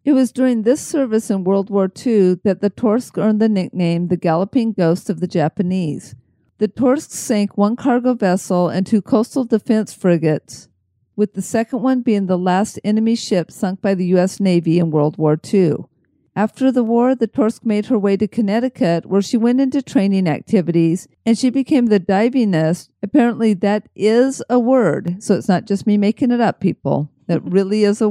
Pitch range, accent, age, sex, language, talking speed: 185-230 Hz, American, 50-69, female, English, 190 wpm